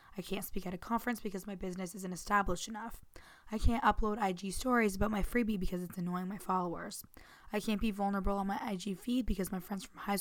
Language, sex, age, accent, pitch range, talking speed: English, female, 20-39, American, 185-215 Hz, 225 wpm